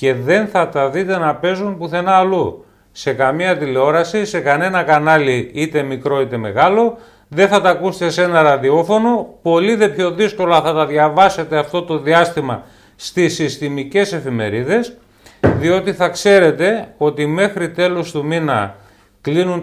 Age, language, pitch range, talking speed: 40-59, Greek, 130-185 Hz, 145 wpm